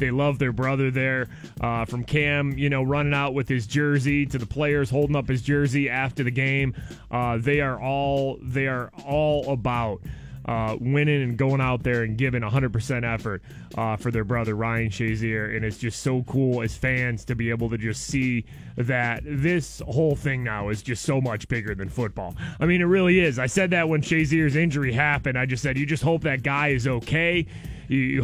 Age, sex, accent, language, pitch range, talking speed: 20-39, male, American, English, 120-150 Hz, 210 wpm